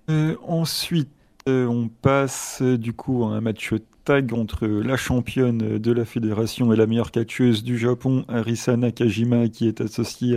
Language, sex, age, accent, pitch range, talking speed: French, male, 30-49, French, 110-120 Hz, 175 wpm